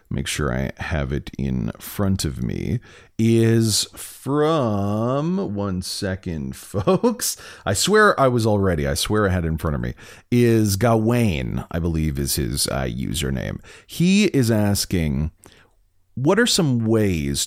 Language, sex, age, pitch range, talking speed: English, male, 40-59, 80-110 Hz, 150 wpm